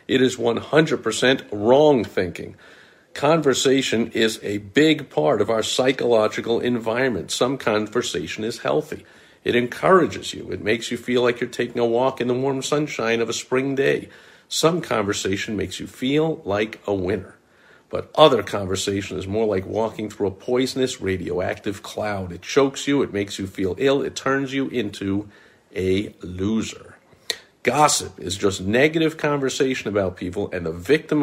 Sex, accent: male, American